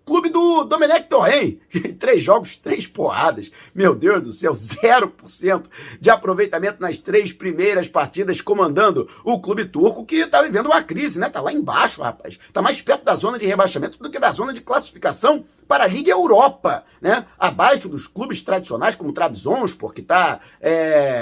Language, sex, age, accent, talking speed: Portuguese, male, 50-69, Brazilian, 175 wpm